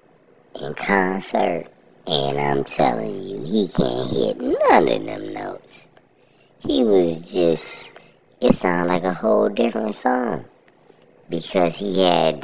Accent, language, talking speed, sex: American, English, 125 wpm, male